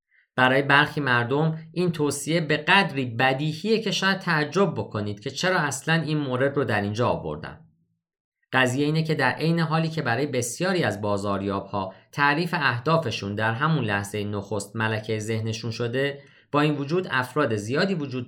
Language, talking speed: Persian, 160 wpm